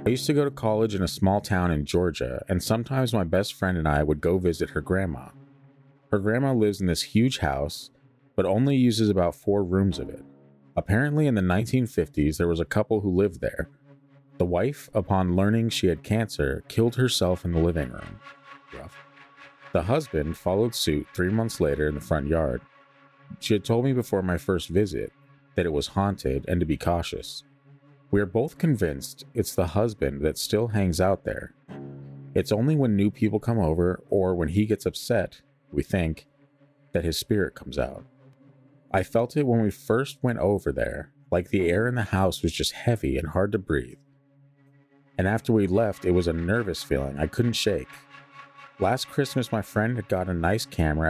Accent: American